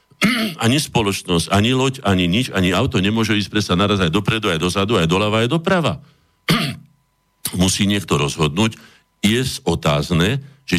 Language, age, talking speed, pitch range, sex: Slovak, 50-69, 145 wpm, 90-120 Hz, male